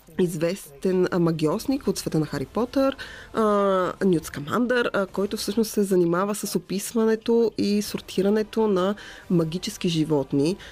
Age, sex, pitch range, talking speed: 20-39, female, 165-205 Hz, 105 wpm